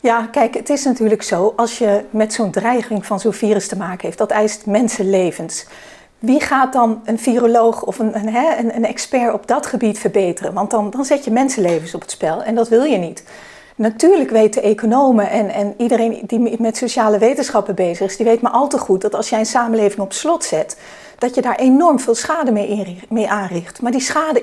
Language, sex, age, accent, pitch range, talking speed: Dutch, female, 40-59, Dutch, 210-255 Hz, 215 wpm